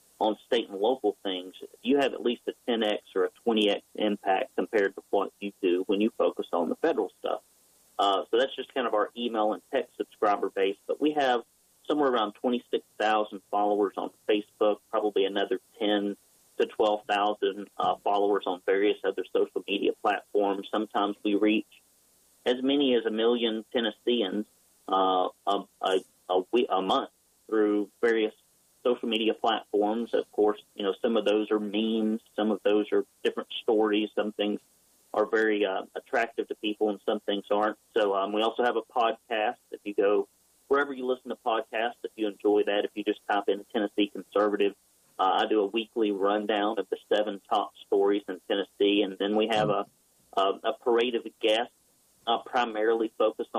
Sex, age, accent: male, 40-59, American